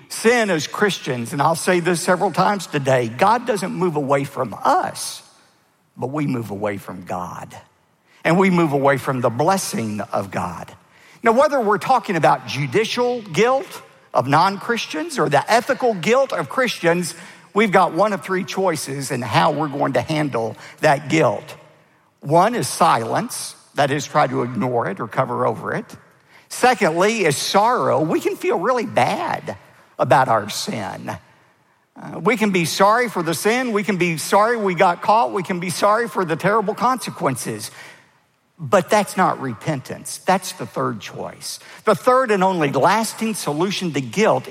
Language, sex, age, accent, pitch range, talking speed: English, male, 50-69, American, 140-205 Hz, 165 wpm